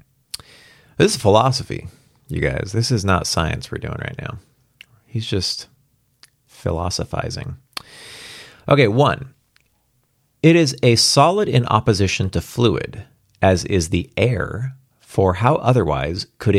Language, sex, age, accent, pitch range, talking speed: English, male, 30-49, American, 95-135 Hz, 125 wpm